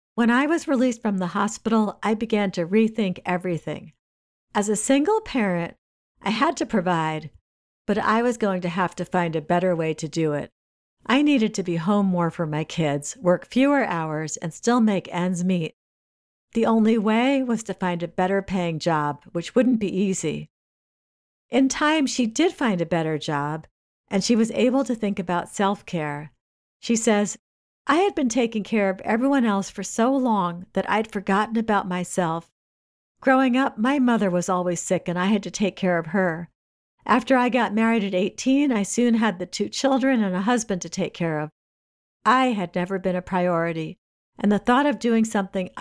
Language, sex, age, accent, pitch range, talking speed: English, female, 50-69, American, 175-230 Hz, 190 wpm